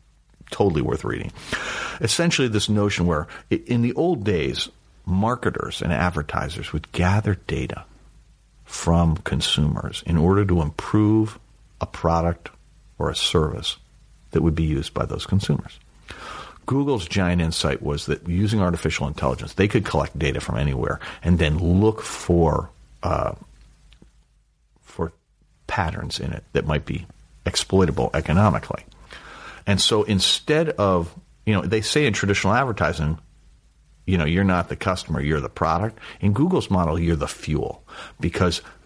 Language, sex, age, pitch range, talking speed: English, male, 50-69, 80-105 Hz, 140 wpm